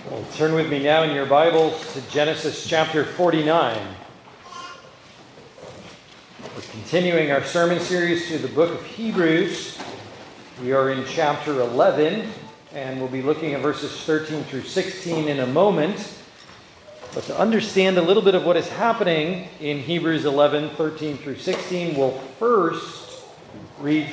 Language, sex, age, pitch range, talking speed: English, male, 40-59, 140-180 Hz, 145 wpm